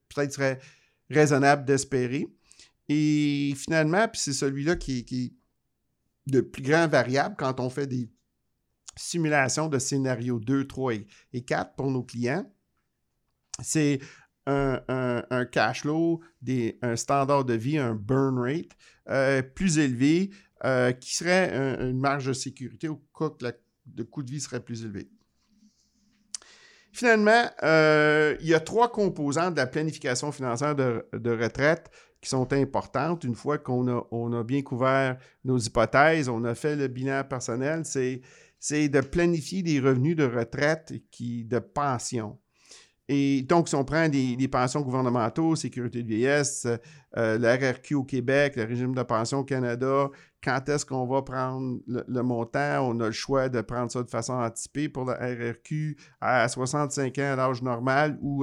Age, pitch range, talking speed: 50-69, 125-145 Hz, 160 wpm